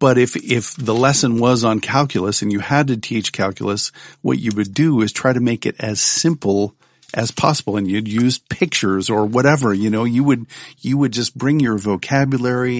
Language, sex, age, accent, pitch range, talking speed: English, male, 50-69, American, 110-135 Hz, 200 wpm